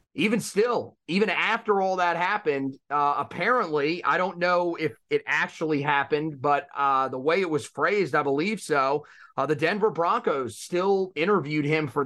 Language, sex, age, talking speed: English, male, 30-49, 170 wpm